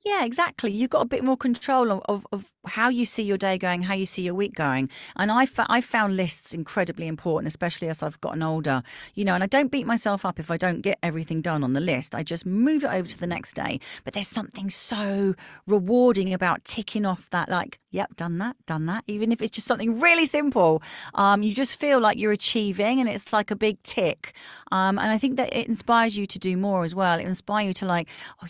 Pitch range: 165-220 Hz